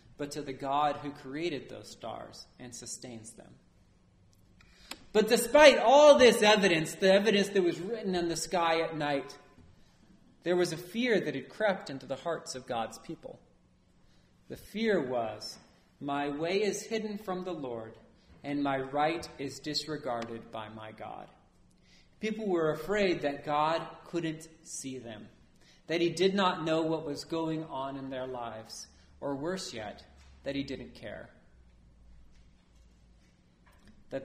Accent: American